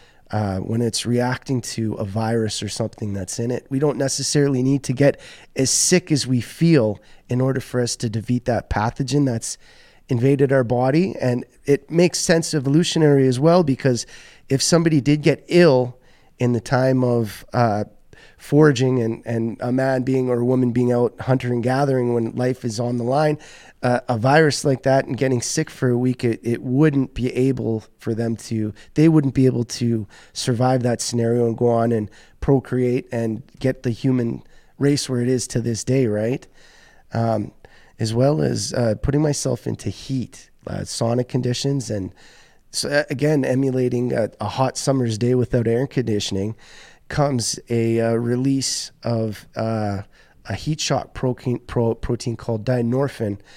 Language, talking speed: English, 170 wpm